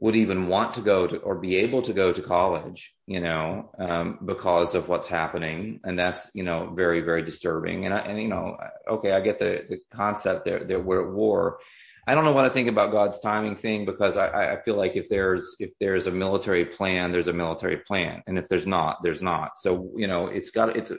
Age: 30-49